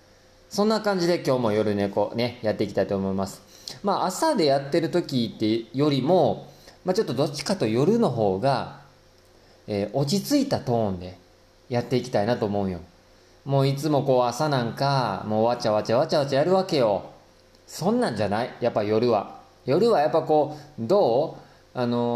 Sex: male